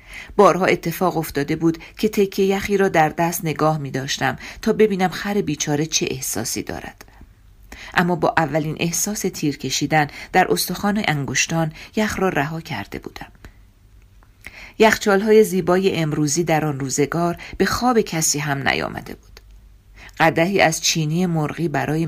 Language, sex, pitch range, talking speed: Persian, female, 145-180 Hz, 140 wpm